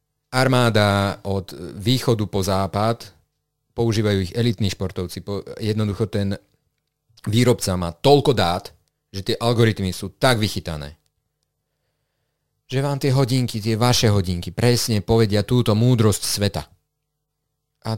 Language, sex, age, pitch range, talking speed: Slovak, male, 30-49, 95-120 Hz, 115 wpm